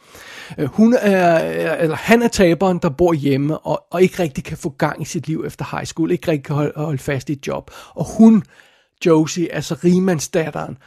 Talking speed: 200 wpm